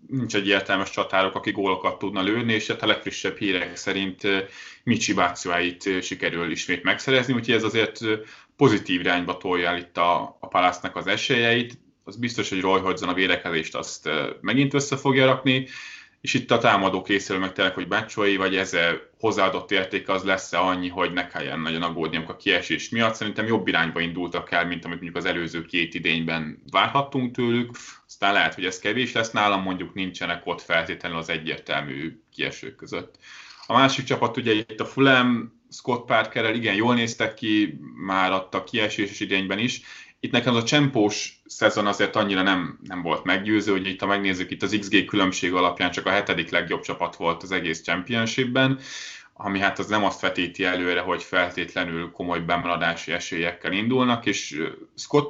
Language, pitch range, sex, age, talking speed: Hungarian, 90-110 Hz, male, 20-39, 170 wpm